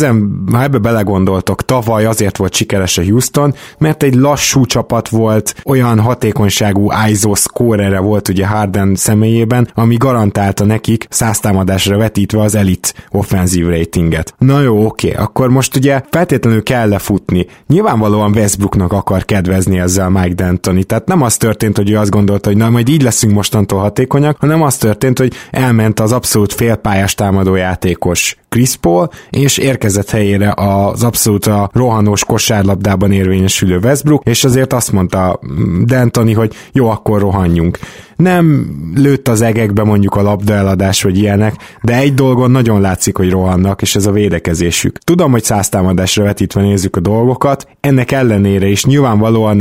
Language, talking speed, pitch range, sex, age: Hungarian, 150 wpm, 100-120 Hz, male, 20-39